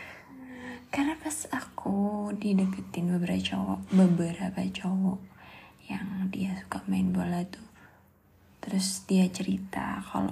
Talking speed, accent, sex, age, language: 105 wpm, native, female, 20-39, Indonesian